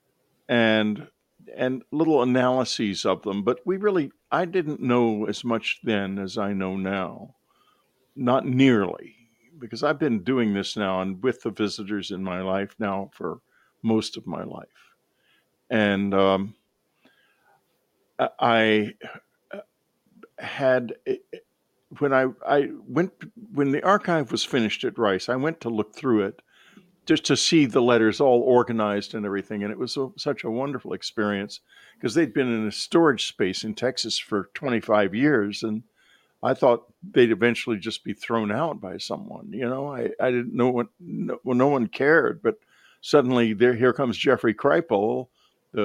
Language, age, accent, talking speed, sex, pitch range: English, 50-69, American, 155 wpm, male, 105-140 Hz